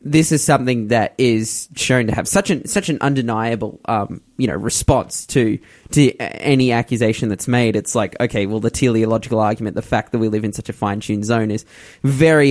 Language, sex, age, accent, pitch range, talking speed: English, male, 20-39, Australian, 110-140 Hz, 190 wpm